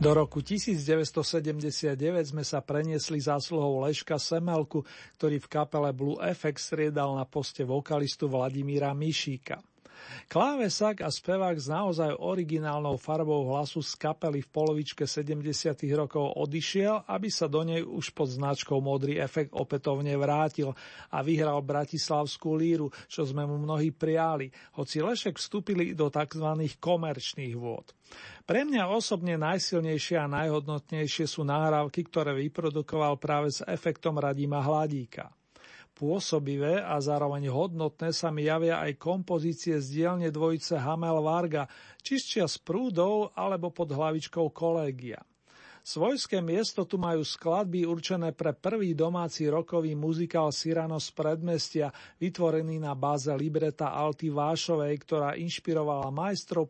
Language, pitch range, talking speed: Slovak, 145-165 Hz, 130 wpm